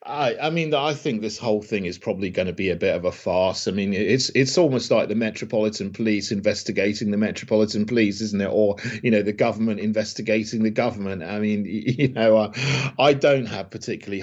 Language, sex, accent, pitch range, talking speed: English, male, British, 110-135 Hz, 205 wpm